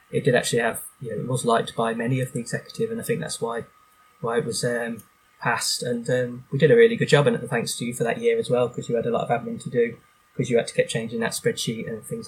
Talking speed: 295 wpm